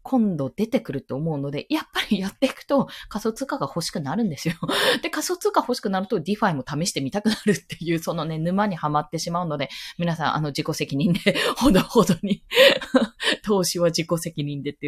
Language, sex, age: Japanese, female, 20-39